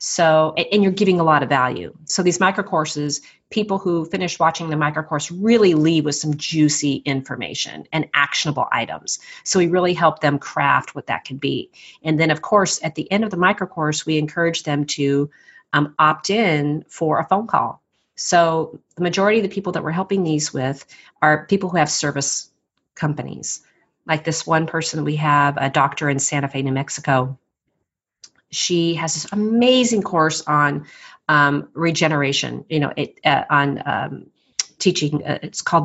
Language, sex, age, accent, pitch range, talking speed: English, female, 40-59, American, 145-175 Hz, 175 wpm